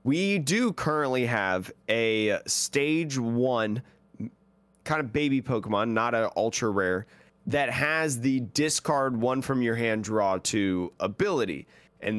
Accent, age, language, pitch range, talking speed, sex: American, 30-49, English, 115-150 Hz, 135 wpm, male